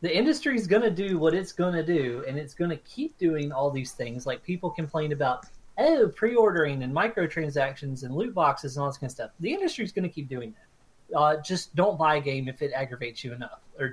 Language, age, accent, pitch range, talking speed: English, 30-49, American, 135-165 Hz, 250 wpm